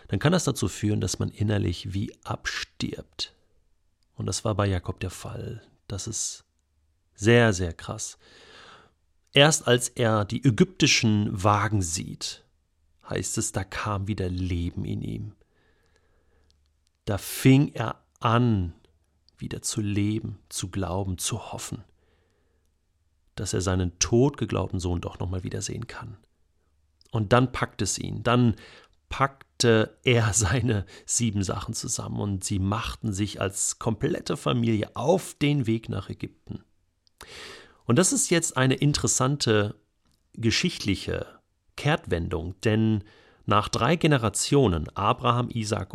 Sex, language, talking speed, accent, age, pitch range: male, German, 125 wpm, German, 40-59, 90-120 Hz